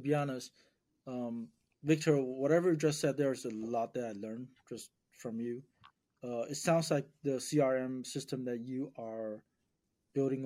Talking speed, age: 165 wpm, 30-49